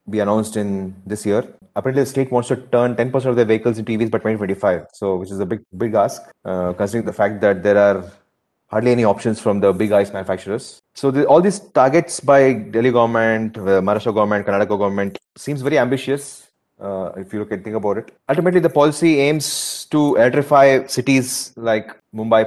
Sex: male